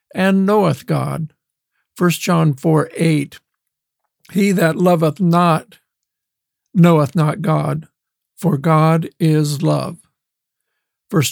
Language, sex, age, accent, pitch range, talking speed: English, male, 60-79, American, 150-175 Hz, 100 wpm